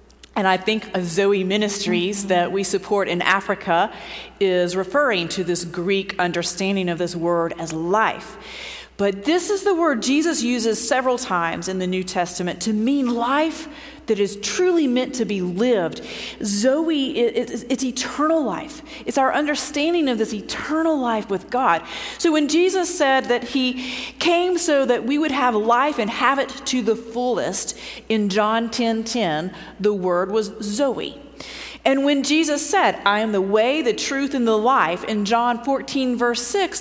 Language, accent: English, American